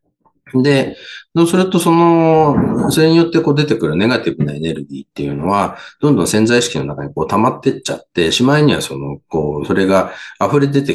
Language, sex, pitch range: Japanese, male, 75-115 Hz